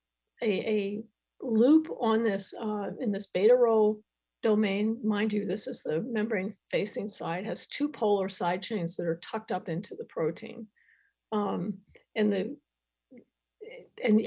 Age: 50-69